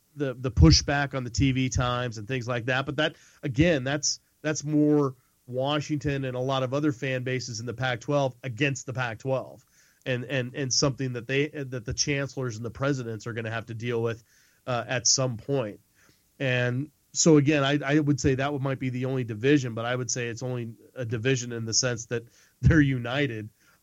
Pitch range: 120-145 Hz